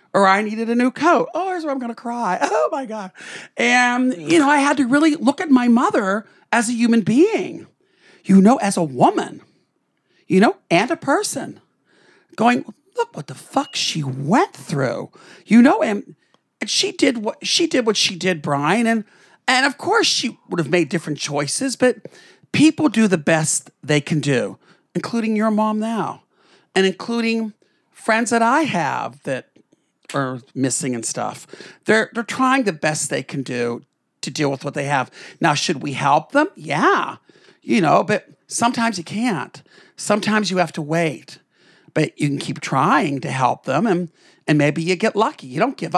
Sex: male